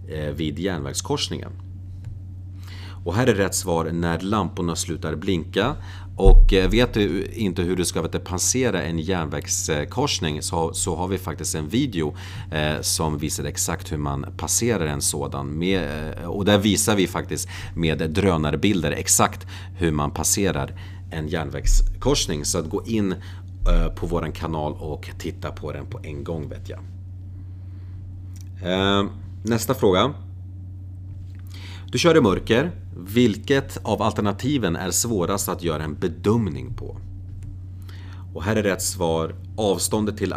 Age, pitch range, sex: 40-59, 85-95 Hz, male